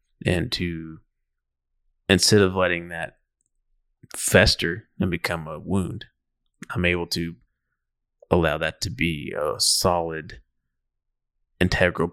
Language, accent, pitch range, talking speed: English, American, 80-95 Hz, 105 wpm